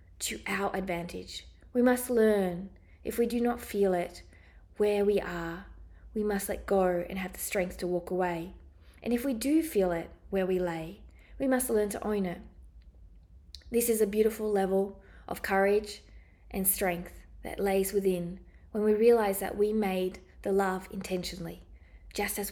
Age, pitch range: 20-39, 165-210 Hz